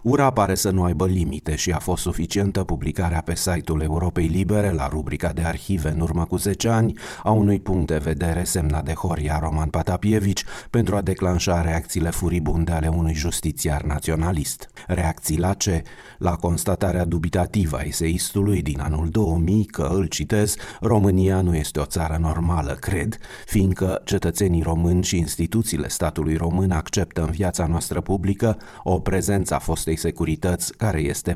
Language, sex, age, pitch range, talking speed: Romanian, male, 30-49, 80-95 Hz, 160 wpm